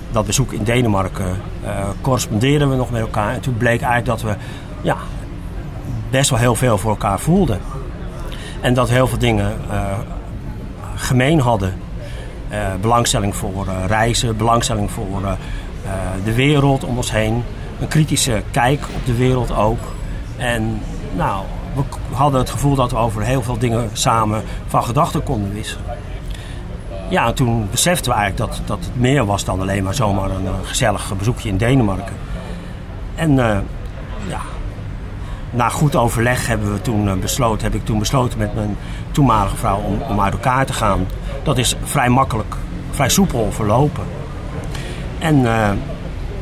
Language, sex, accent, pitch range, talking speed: Dutch, male, Dutch, 100-125 Hz, 155 wpm